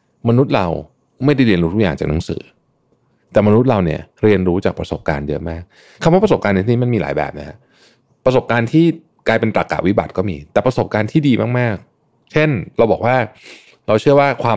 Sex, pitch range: male, 90-140 Hz